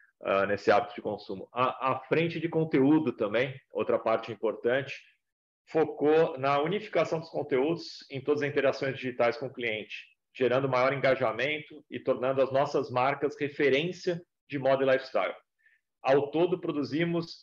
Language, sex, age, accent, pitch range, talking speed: Portuguese, male, 40-59, Brazilian, 125-160 Hz, 145 wpm